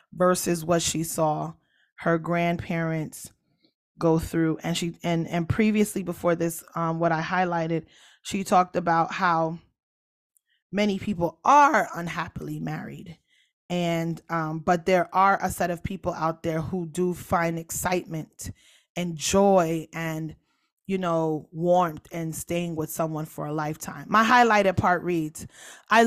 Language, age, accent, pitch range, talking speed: English, 20-39, American, 165-205 Hz, 140 wpm